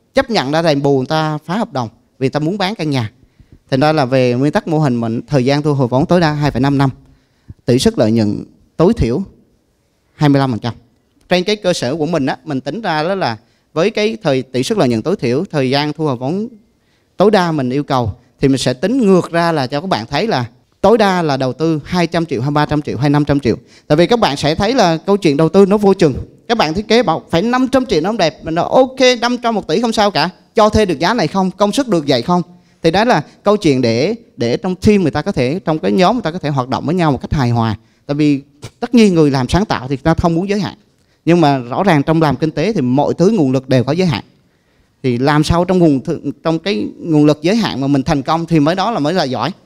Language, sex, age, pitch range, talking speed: Vietnamese, male, 20-39, 135-185 Hz, 270 wpm